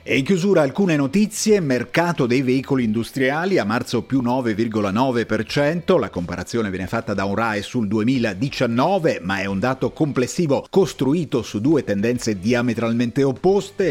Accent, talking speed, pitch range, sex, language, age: native, 140 wpm, 100-145 Hz, male, Italian, 40-59